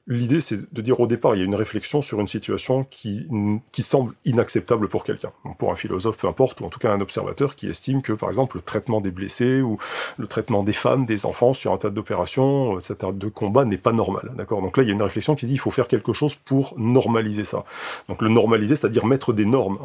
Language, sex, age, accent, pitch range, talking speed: French, male, 40-59, French, 105-130 Hz, 250 wpm